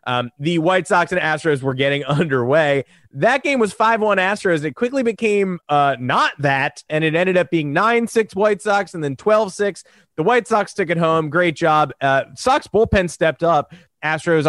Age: 20-39